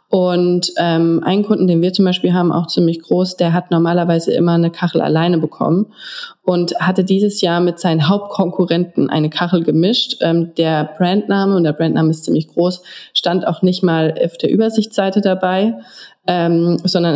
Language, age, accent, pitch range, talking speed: German, 20-39, German, 165-190 Hz, 170 wpm